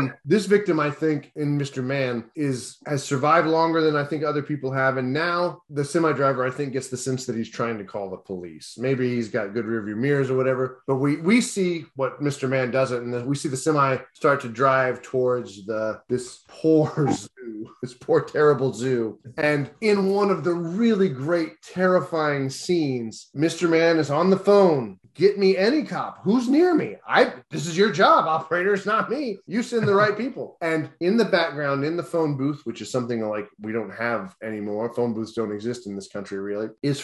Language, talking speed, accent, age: English, 210 wpm, American, 30-49